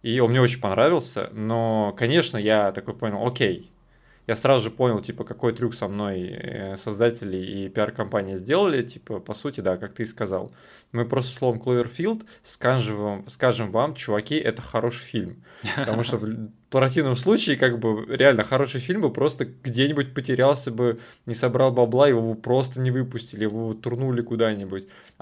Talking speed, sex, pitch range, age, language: 165 wpm, male, 110-135 Hz, 20-39, Russian